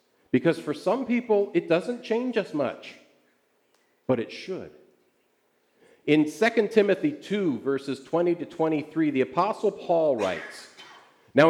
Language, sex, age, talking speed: English, male, 50-69, 130 wpm